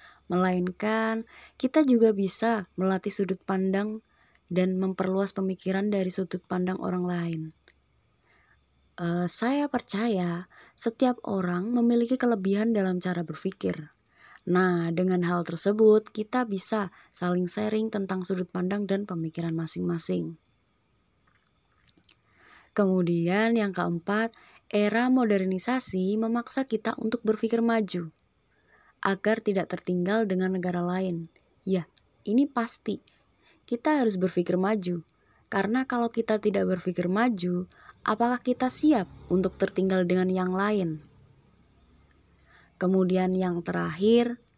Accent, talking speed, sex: native, 105 wpm, female